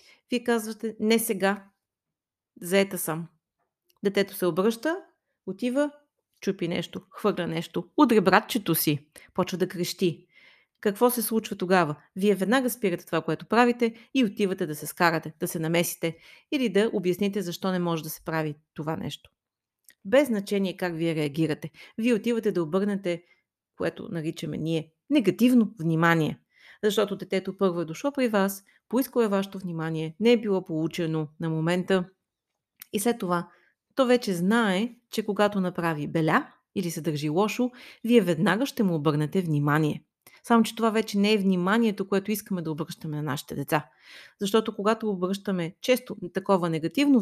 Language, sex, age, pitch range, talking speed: Bulgarian, female, 30-49, 170-225 Hz, 150 wpm